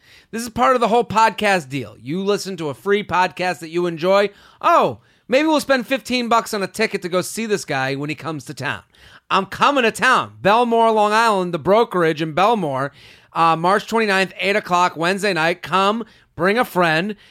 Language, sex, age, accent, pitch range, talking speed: English, male, 30-49, American, 140-200 Hz, 200 wpm